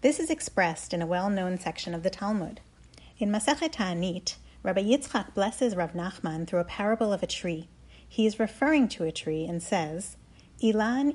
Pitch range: 175-235 Hz